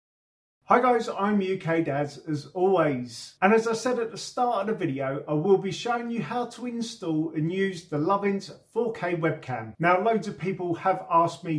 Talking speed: 195 wpm